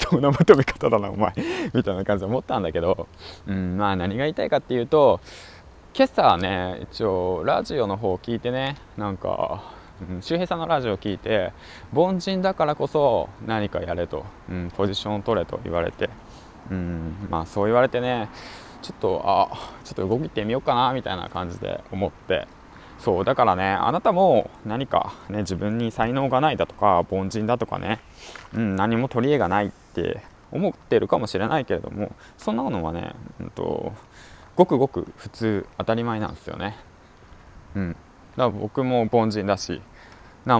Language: Japanese